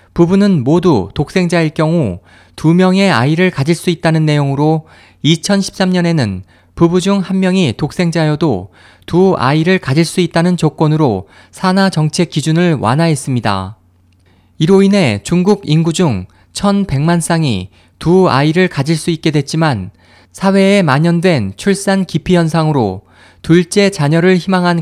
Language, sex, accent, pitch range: Korean, male, native, 110-180 Hz